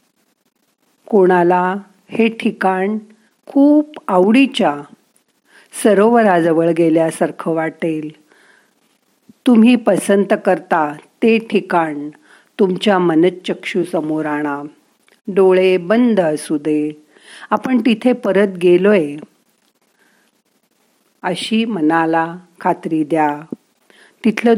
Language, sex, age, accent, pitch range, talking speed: Marathi, female, 50-69, native, 165-210 Hz, 70 wpm